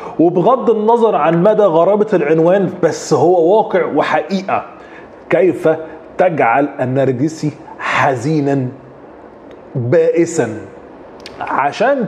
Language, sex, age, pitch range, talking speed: Arabic, male, 30-49, 150-195 Hz, 80 wpm